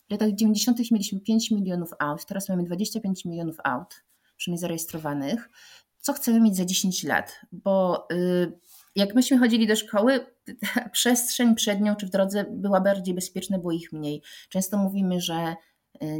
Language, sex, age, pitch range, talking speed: Polish, female, 30-49, 180-230 Hz, 155 wpm